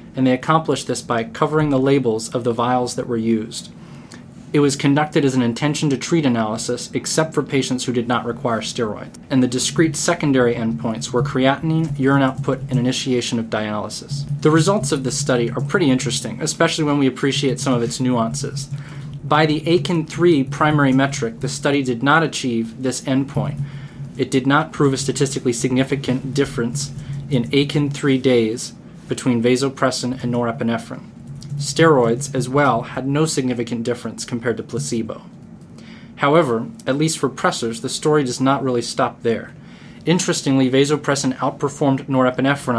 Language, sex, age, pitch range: English, male, 20-39, 125-145 Hz